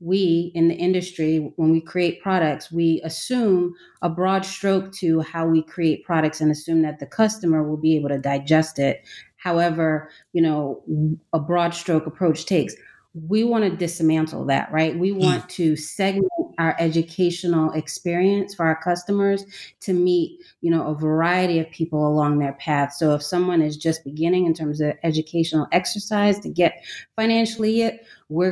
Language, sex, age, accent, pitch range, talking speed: English, female, 30-49, American, 155-180 Hz, 165 wpm